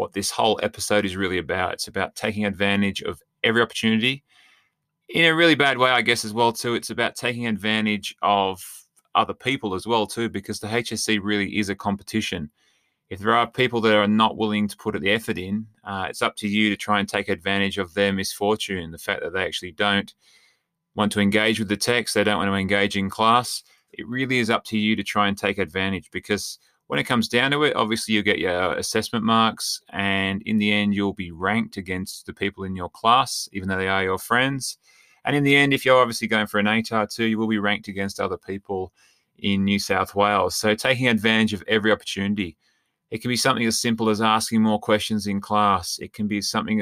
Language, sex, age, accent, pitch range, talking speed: English, male, 20-39, Australian, 100-115 Hz, 225 wpm